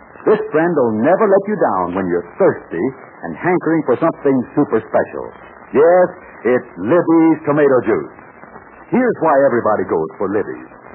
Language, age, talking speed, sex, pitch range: English, 60-79, 150 wpm, male, 145-210 Hz